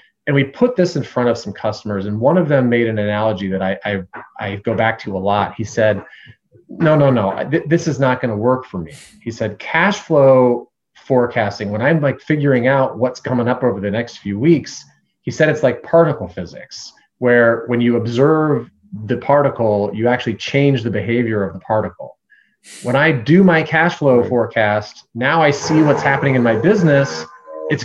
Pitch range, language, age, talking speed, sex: 105-140 Hz, English, 30-49, 200 wpm, male